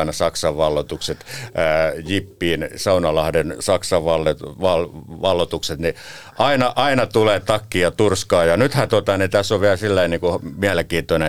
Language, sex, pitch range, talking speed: Finnish, male, 75-100 Hz, 135 wpm